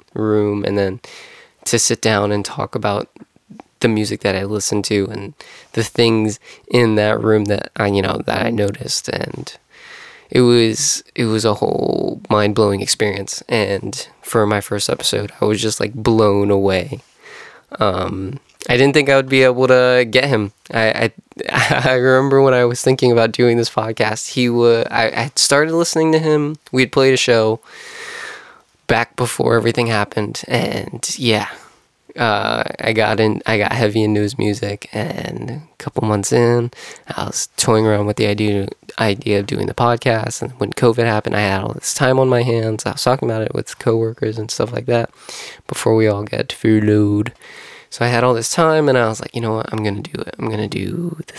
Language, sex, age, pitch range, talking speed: English, male, 20-39, 105-125 Hz, 195 wpm